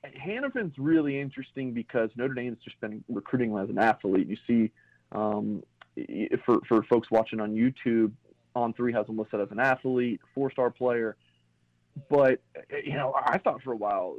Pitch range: 105-130 Hz